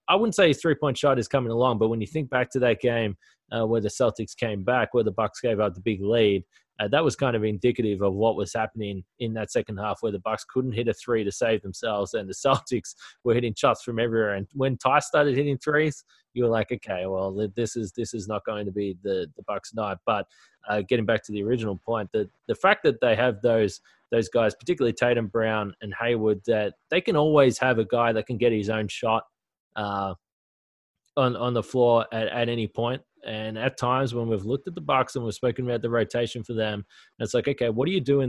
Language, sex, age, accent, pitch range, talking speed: English, male, 20-39, Australian, 110-130 Hz, 245 wpm